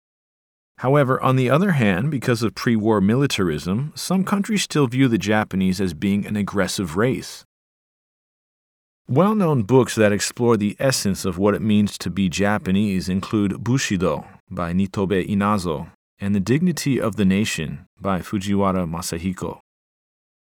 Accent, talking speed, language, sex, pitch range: American, 140 wpm, English, male, 95-130 Hz